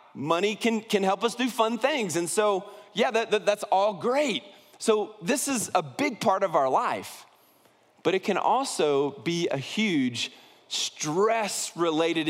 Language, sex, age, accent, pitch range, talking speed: English, male, 30-49, American, 170-225 Hz, 160 wpm